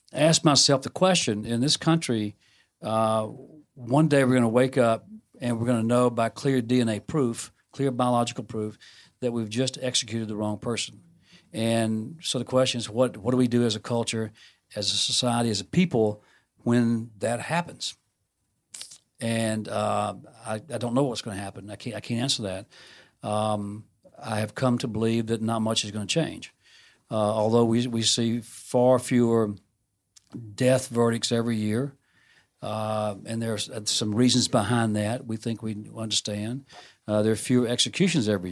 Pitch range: 110-130 Hz